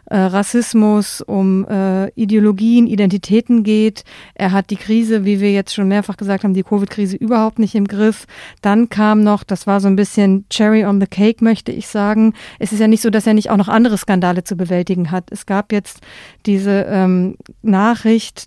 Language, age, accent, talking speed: German, 50-69, German, 190 wpm